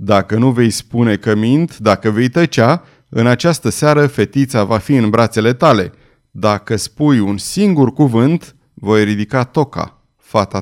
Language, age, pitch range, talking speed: Romanian, 30-49, 110-160 Hz, 155 wpm